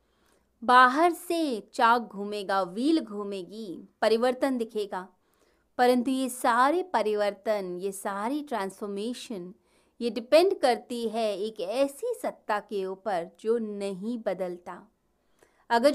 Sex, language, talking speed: female, Hindi, 105 wpm